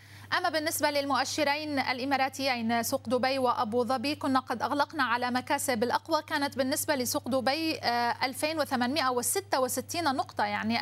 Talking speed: 115 wpm